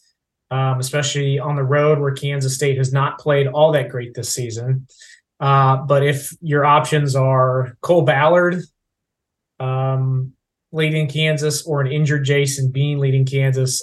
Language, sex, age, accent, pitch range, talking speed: English, male, 20-39, American, 130-150 Hz, 150 wpm